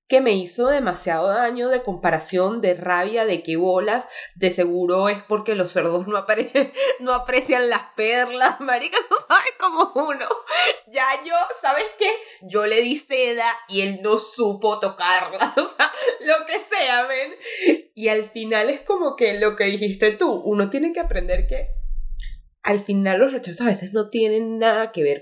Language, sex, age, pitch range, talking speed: Spanish, female, 20-39, 180-245 Hz, 175 wpm